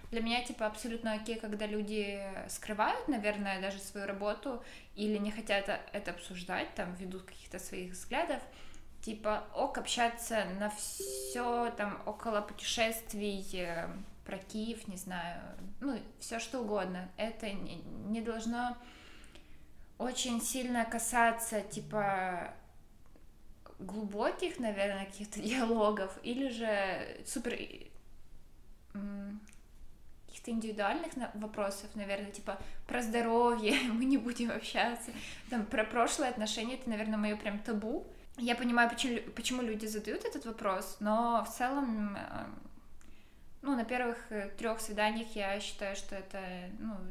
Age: 20-39